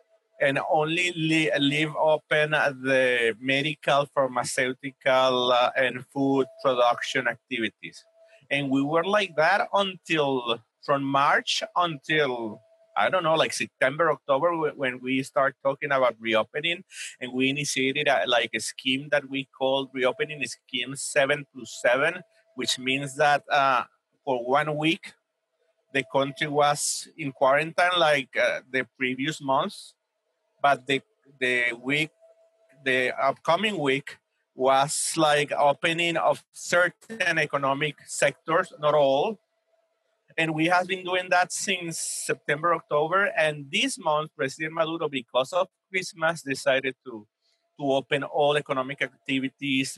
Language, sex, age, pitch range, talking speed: English, male, 30-49, 130-165 Hz, 125 wpm